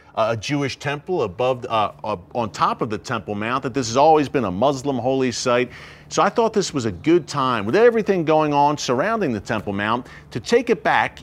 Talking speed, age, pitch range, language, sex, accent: 215 wpm, 40-59, 115-160 Hz, English, male, American